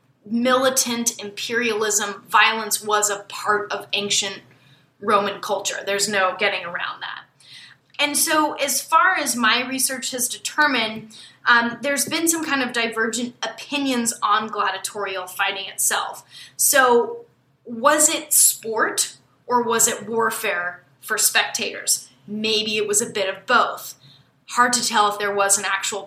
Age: 20-39